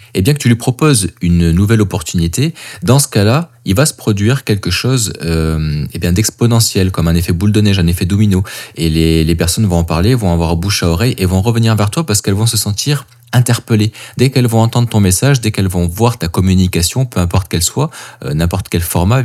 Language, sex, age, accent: French, male, 20-39, French